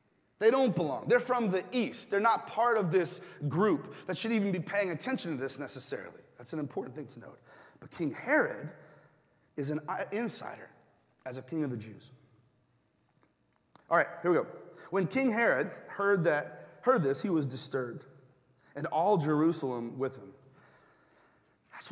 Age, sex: 30-49, male